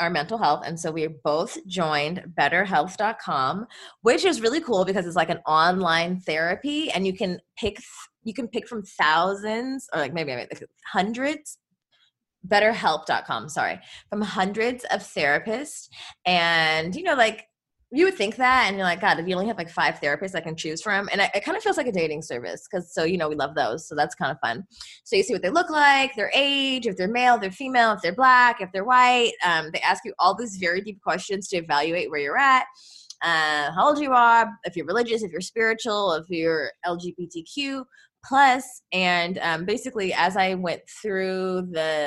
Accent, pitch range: American, 170-230 Hz